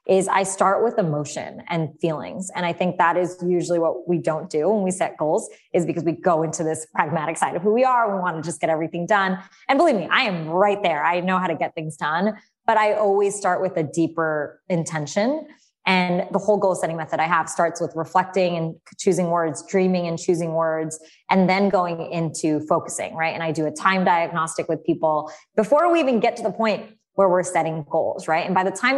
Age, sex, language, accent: 20-39, female, English, American